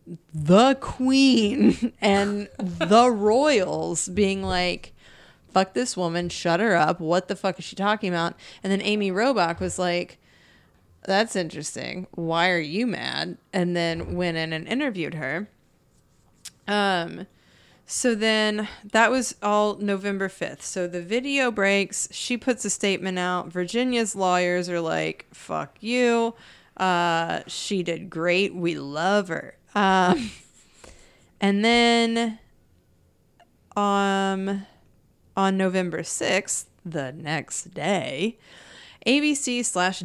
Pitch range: 175-210 Hz